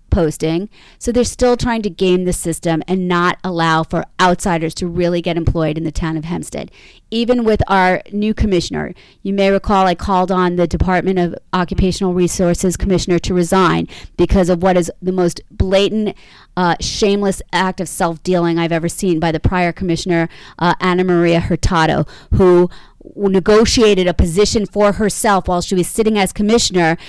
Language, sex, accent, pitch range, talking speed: English, female, American, 175-195 Hz, 170 wpm